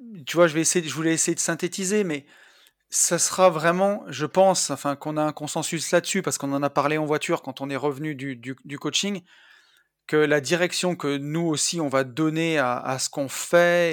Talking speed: 220 wpm